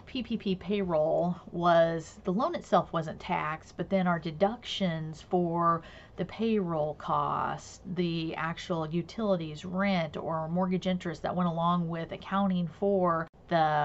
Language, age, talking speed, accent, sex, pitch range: English, 30-49, 130 wpm, American, female, 165-200 Hz